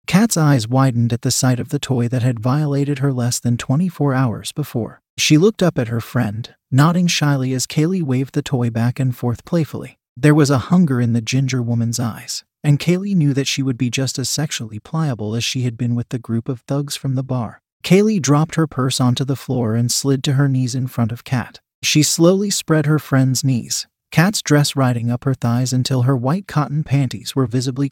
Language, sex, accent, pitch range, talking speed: English, male, American, 125-150 Hz, 220 wpm